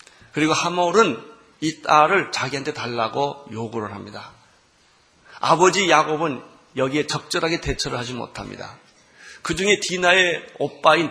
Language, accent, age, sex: Korean, native, 40-59, male